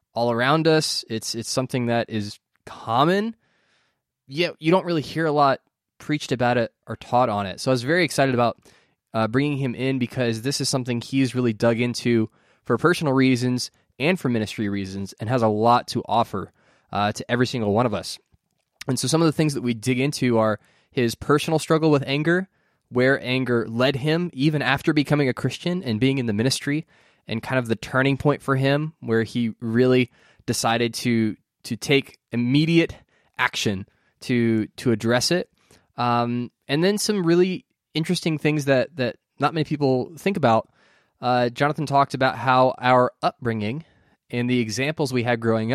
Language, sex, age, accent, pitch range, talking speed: English, male, 20-39, American, 120-150 Hz, 180 wpm